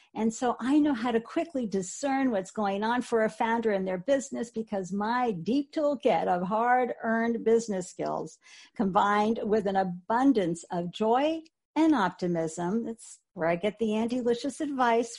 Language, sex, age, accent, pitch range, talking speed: English, female, 50-69, American, 200-260 Hz, 160 wpm